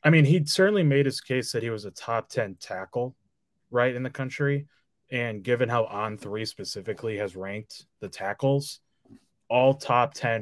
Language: English